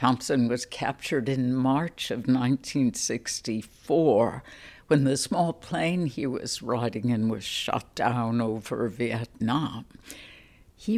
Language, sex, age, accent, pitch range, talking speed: English, female, 60-79, American, 125-155 Hz, 115 wpm